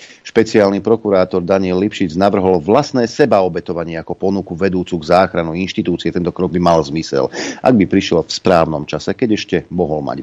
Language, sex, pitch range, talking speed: Slovak, male, 85-105 Hz, 165 wpm